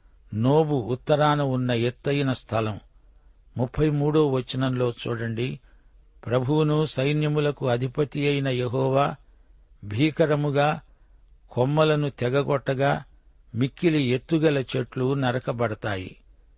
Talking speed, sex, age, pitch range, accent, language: 75 wpm, male, 60-79, 120-145 Hz, native, Telugu